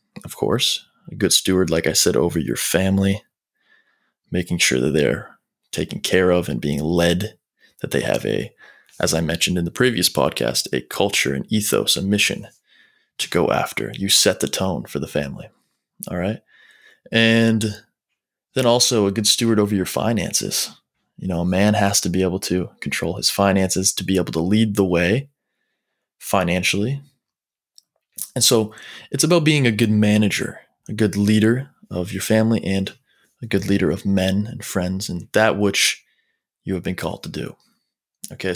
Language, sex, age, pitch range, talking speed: English, male, 20-39, 95-115 Hz, 175 wpm